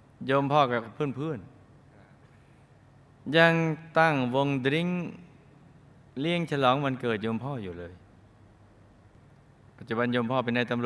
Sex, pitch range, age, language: male, 110-140 Hz, 20-39, Thai